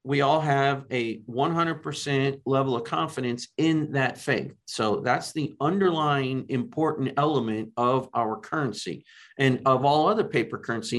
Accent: American